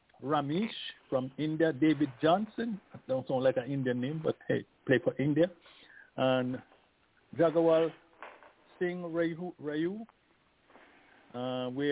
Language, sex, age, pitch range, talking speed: English, male, 50-69, 130-170 Hz, 105 wpm